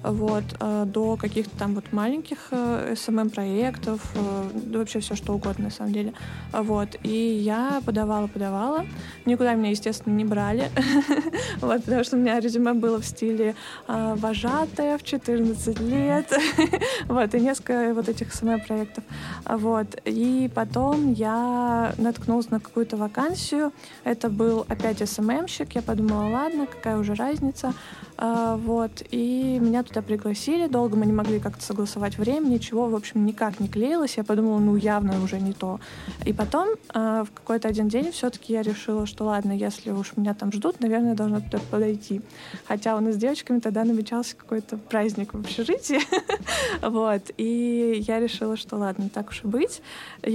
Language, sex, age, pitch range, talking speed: Russian, female, 20-39, 210-240 Hz, 145 wpm